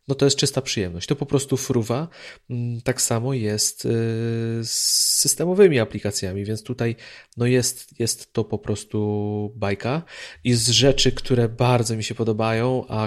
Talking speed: 145 wpm